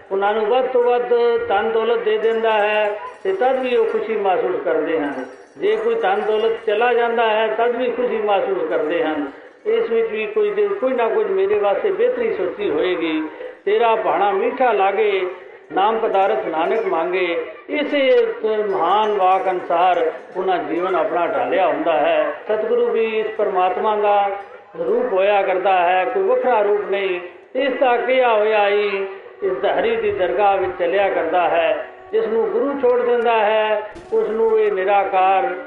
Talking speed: 150 wpm